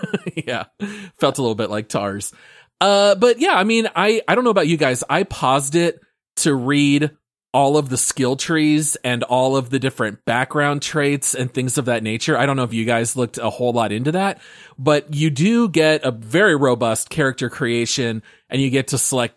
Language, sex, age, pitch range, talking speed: English, male, 30-49, 120-150 Hz, 210 wpm